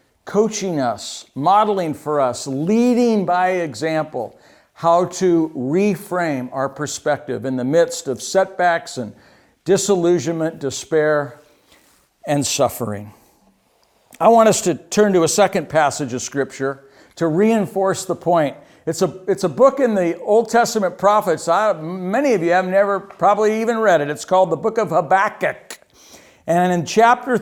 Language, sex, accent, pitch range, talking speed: English, male, American, 145-200 Hz, 140 wpm